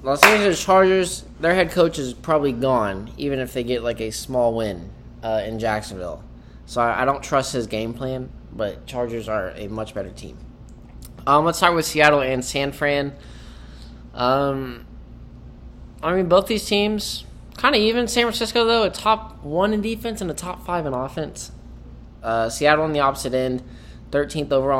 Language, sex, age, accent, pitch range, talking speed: English, male, 20-39, American, 110-145 Hz, 175 wpm